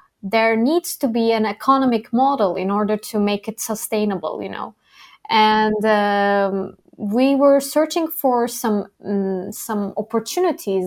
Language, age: Arabic, 20-39